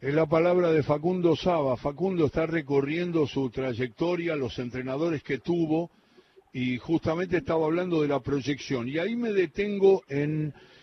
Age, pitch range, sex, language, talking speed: 60-79, 125-170 Hz, male, Spanish, 150 wpm